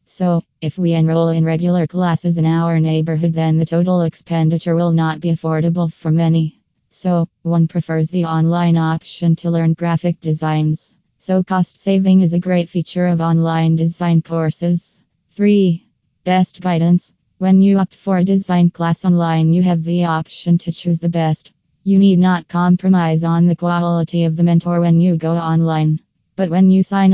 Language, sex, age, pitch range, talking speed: English, female, 20-39, 165-180 Hz, 170 wpm